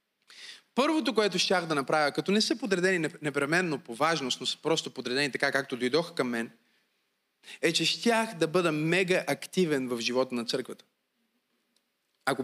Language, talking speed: Bulgarian, 160 wpm